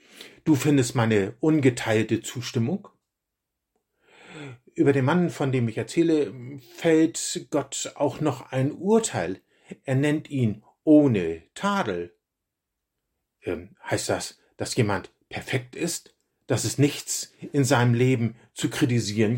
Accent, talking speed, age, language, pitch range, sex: German, 120 wpm, 50-69, German, 115-155 Hz, male